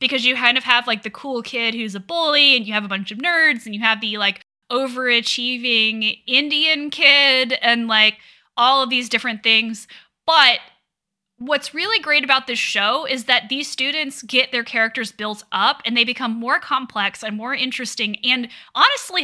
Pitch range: 225-280 Hz